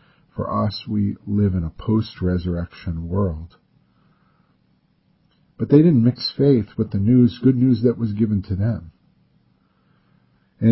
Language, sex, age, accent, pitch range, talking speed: English, male, 50-69, American, 100-145 Hz, 135 wpm